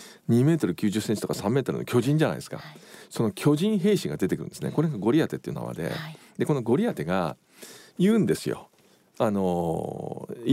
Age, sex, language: 50-69, male, Japanese